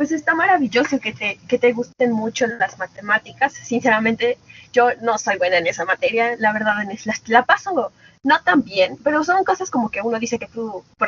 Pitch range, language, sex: 200-255 Hz, Spanish, female